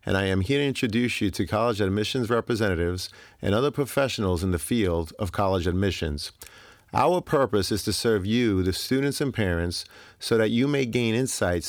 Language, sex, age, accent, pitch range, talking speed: English, male, 40-59, American, 95-120 Hz, 185 wpm